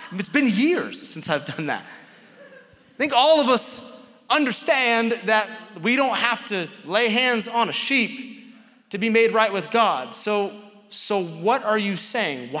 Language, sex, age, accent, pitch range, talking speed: English, male, 30-49, American, 155-215 Hz, 165 wpm